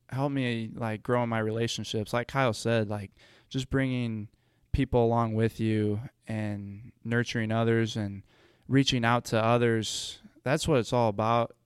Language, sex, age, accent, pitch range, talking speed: English, male, 20-39, American, 110-120 Hz, 155 wpm